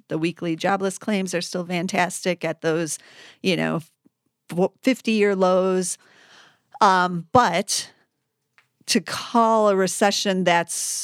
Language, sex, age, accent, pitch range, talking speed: English, female, 40-59, American, 170-205 Hz, 110 wpm